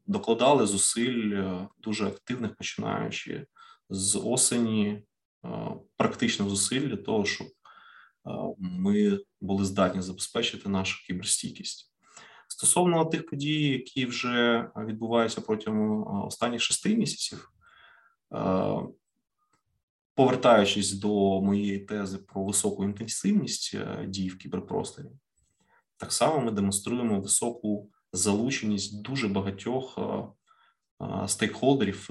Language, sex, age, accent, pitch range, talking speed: Ukrainian, male, 20-39, native, 95-120 Hz, 90 wpm